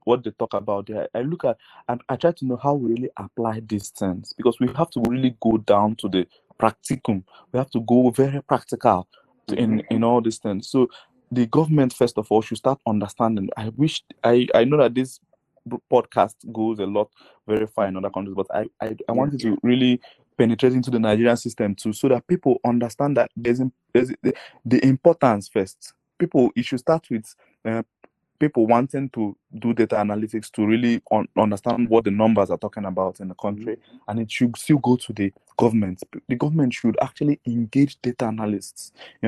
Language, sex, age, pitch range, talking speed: English, male, 20-39, 110-130 Hz, 195 wpm